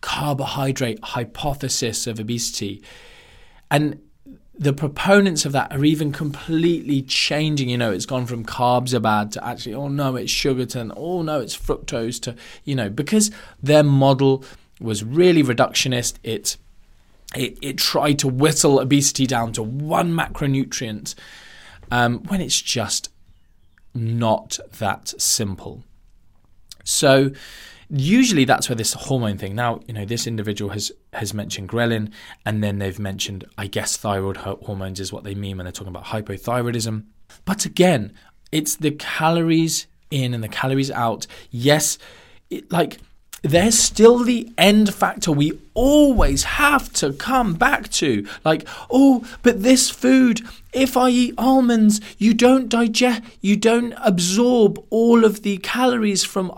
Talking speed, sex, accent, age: 145 wpm, male, British, 20-39